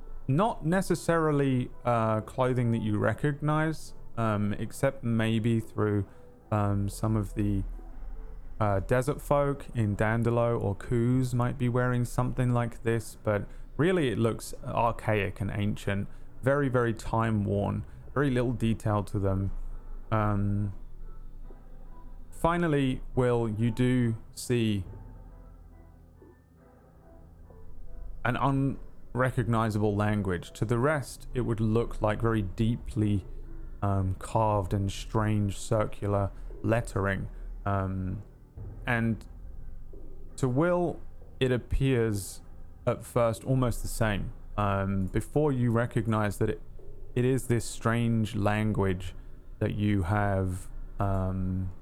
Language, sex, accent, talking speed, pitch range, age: English, male, British, 110 wpm, 100-125 Hz, 20-39